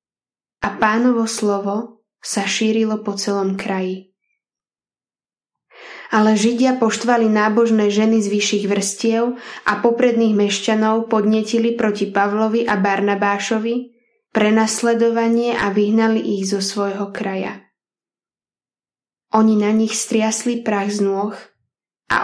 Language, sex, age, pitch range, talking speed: Slovak, female, 10-29, 200-225 Hz, 105 wpm